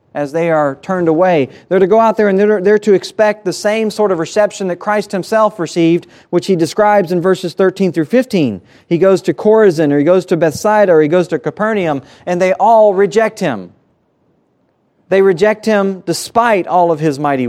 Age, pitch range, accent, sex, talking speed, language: 40-59, 140-185 Hz, American, male, 200 wpm, English